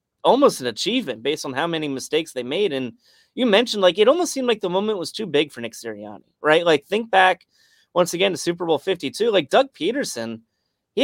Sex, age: male, 30-49